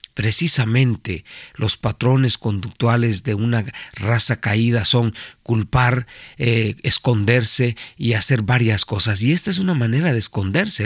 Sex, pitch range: male, 110-135 Hz